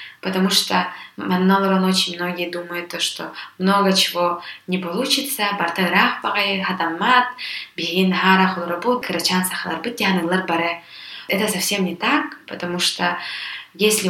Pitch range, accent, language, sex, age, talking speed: 170-200 Hz, native, Russian, female, 20-39, 70 wpm